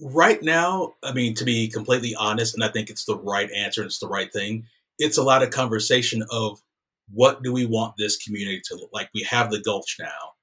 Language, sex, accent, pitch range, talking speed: English, male, American, 105-120 Hz, 230 wpm